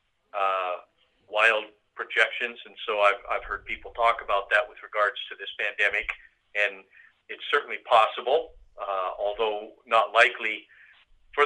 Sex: male